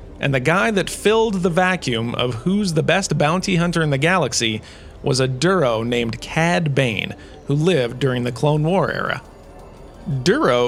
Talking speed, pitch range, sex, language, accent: 170 wpm, 120-165 Hz, male, English, American